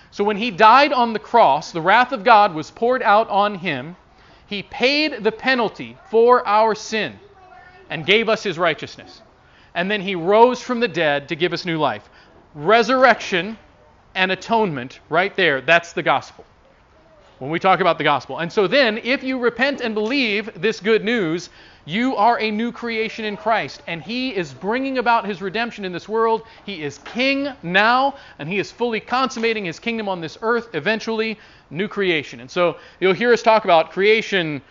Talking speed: 185 wpm